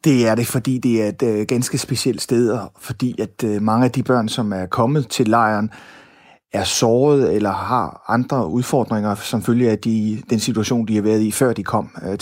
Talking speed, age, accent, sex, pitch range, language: 215 wpm, 30-49, native, male, 110-130 Hz, Danish